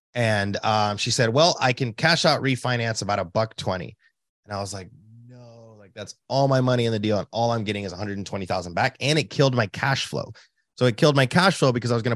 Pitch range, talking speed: 105-135 Hz, 245 wpm